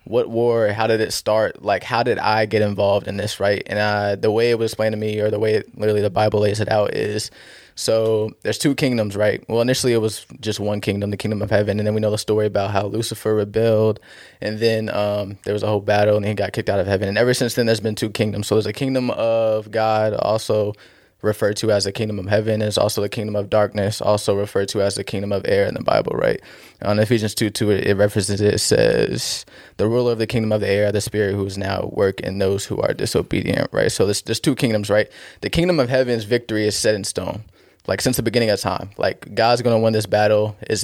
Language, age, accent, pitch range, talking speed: English, 20-39, American, 105-115 Hz, 255 wpm